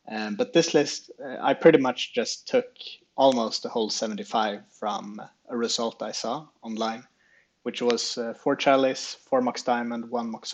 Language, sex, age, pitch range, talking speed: English, male, 30-49, 120-155 Hz, 170 wpm